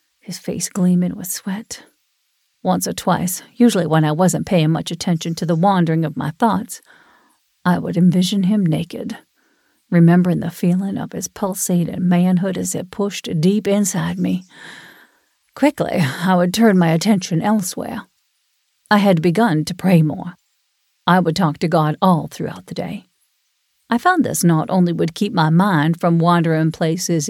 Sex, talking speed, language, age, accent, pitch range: female, 160 wpm, English, 50-69, American, 165-200 Hz